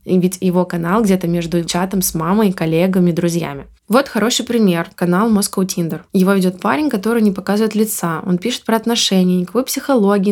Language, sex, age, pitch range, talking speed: Russian, female, 20-39, 180-215 Hz, 170 wpm